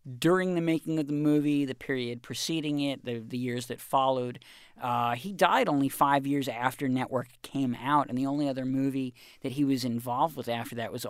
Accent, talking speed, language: American, 205 wpm, English